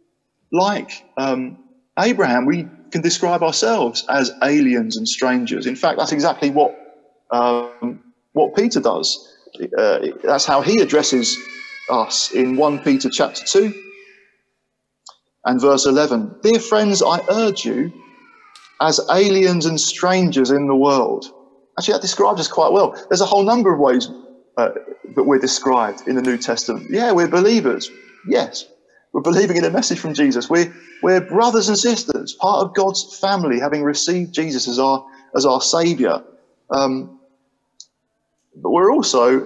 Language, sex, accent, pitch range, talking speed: English, male, British, 135-215 Hz, 150 wpm